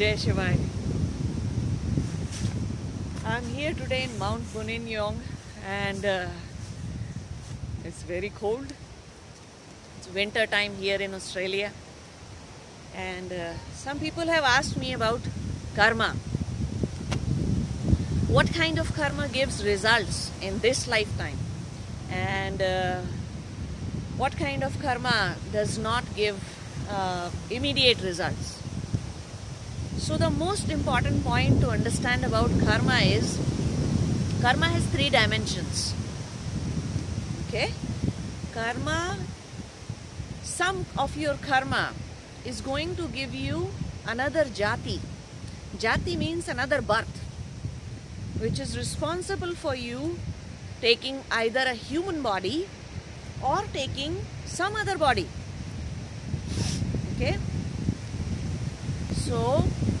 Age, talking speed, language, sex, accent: 30-49, 95 wpm, English, female, Indian